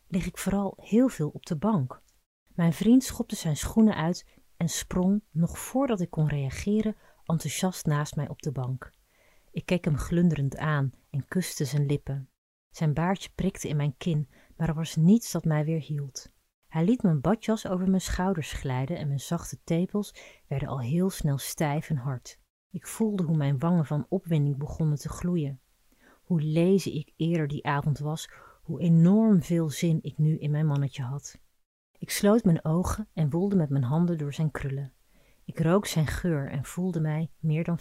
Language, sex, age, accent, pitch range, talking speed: Dutch, female, 30-49, Dutch, 145-180 Hz, 185 wpm